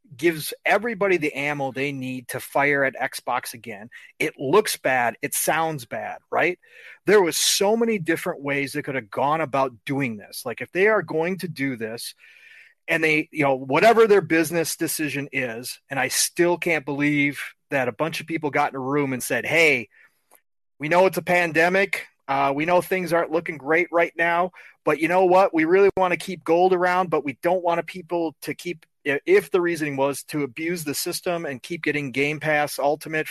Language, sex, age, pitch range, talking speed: English, male, 30-49, 145-185 Hz, 200 wpm